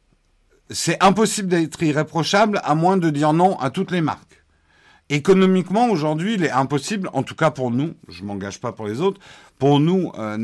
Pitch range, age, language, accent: 125-180 Hz, 50-69, French, French